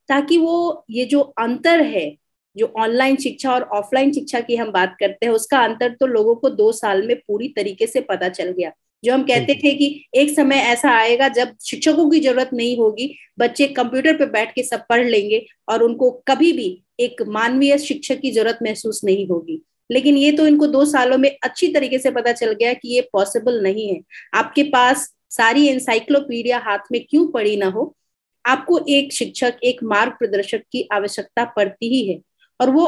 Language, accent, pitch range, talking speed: English, Indian, 230-290 Hz, 140 wpm